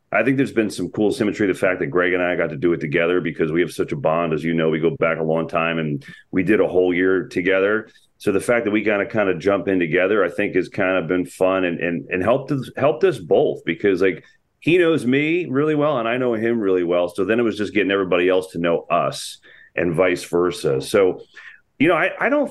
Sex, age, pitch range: male, 40-59, 90-125 Hz